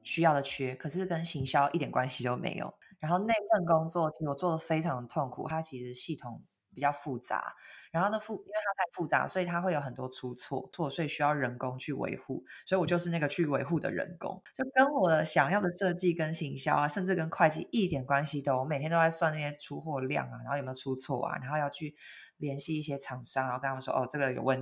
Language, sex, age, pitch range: Chinese, female, 20-39, 140-190 Hz